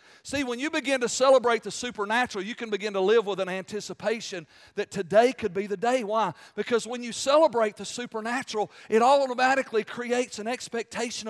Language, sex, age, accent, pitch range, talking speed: English, male, 40-59, American, 190-275 Hz, 180 wpm